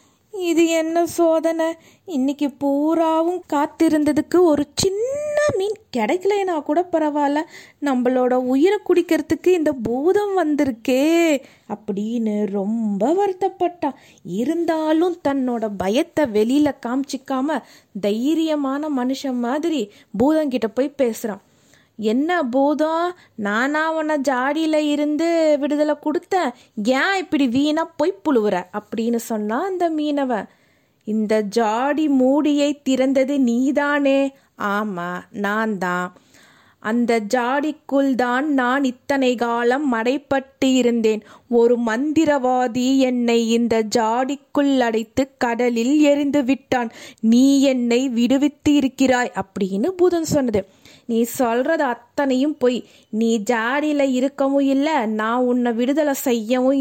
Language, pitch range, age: Tamil, 235-300 Hz, 20-39